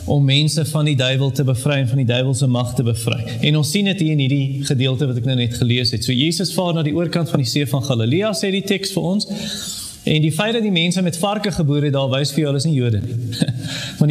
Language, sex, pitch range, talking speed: English, male, 140-195 Hz, 250 wpm